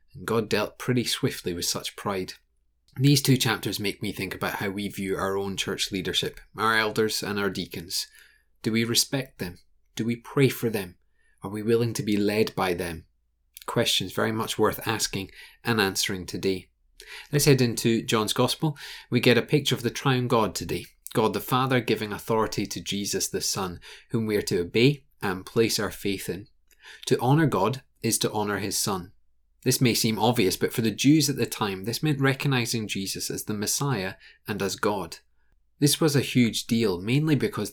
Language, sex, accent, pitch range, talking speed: English, male, British, 100-125 Hz, 190 wpm